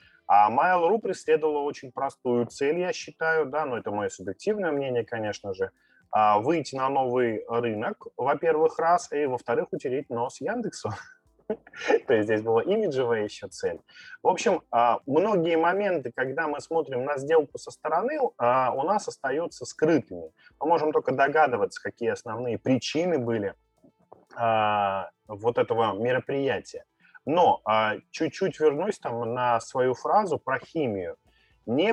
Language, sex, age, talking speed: Russian, male, 20-39, 130 wpm